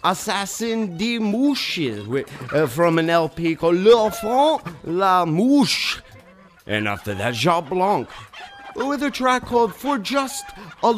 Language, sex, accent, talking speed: English, male, American, 125 wpm